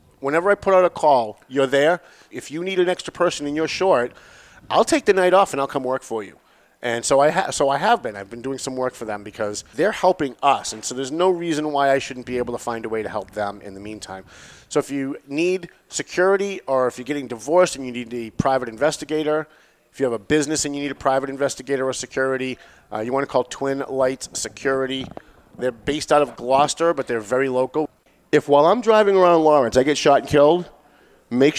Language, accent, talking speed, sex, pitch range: English, American, 230 wpm, male, 115-150 Hz